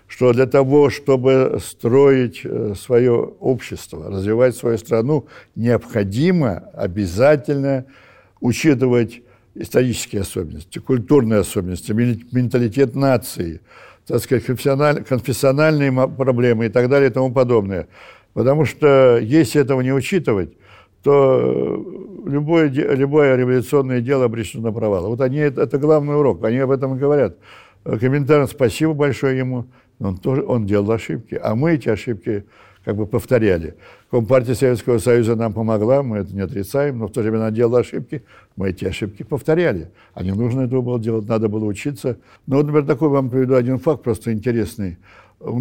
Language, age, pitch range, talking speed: Russian, 60-79, 110-135 Hz, 145 wpm